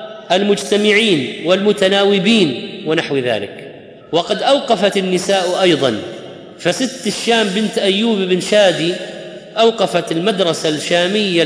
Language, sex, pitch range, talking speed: Arabic, male, 180-220 Hz, 90 wpm